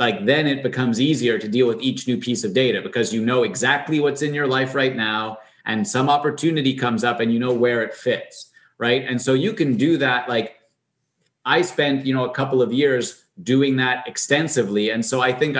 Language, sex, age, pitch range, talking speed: English, male, 30-49, 115-135 Hz, 220 wpm